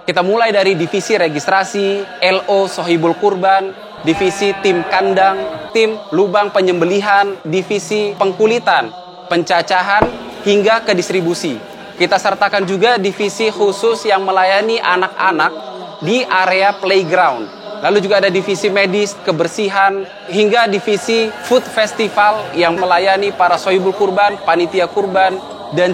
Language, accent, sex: Indonesian, native, male